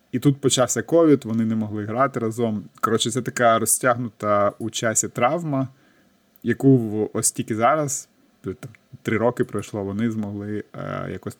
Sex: male